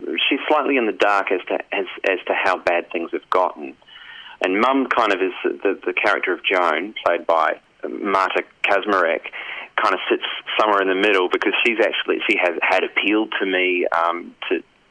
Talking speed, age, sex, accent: 190 wpm, 30-49, male, Australian